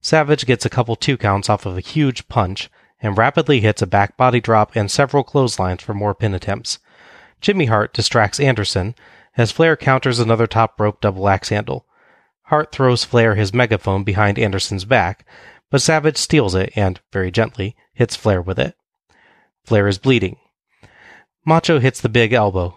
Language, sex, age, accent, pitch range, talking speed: English, male, 30-49, American, 100-125 Hz, 170 wpm